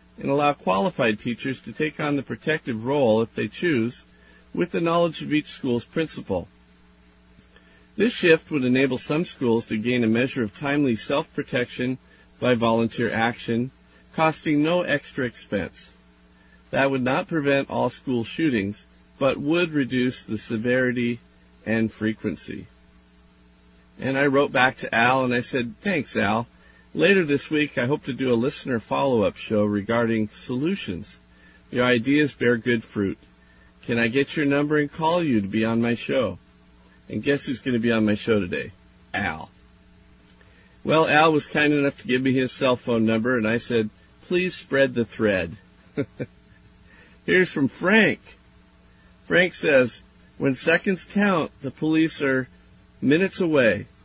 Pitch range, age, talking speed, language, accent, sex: 105-145 Hz, 50-69, 155 wpm, English, American, male